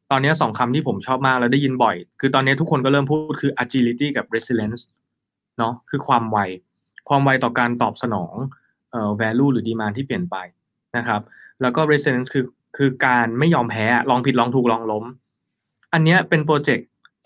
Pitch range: 115-140 Hz